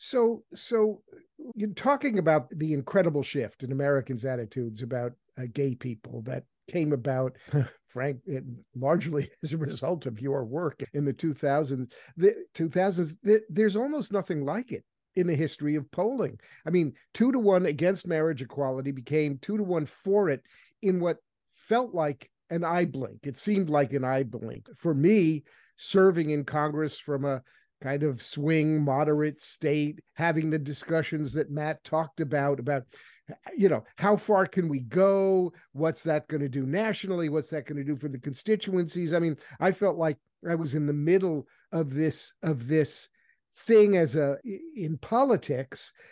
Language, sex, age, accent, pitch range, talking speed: English, male, 50-69, American, 145-200 Hz, 170 wpm